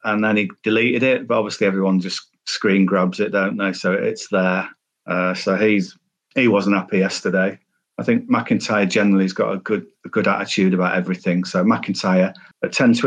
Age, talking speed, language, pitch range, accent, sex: 40-59, 195 wpm, English, 105-140 Hz, British, male